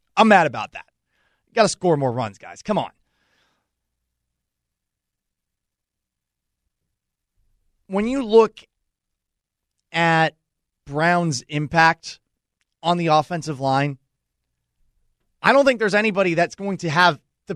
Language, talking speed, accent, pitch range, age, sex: English, 110 wpm, American, 135-185 Hz, 30-49, male